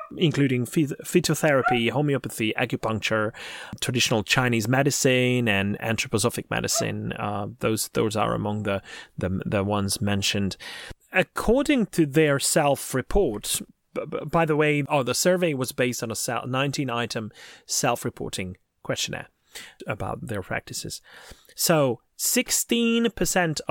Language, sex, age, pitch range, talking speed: English, male, 30-49, 110-160 Hz, 115 wpm